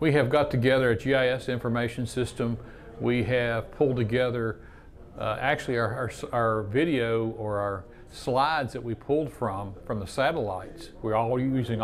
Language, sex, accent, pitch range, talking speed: English, male, American, 110-130 Hz, 155 wpm